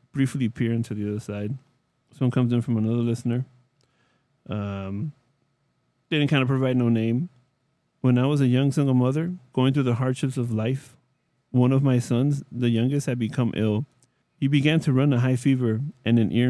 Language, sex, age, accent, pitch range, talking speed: English, male, 30-49, American, 115-135 Hz, 185 wpm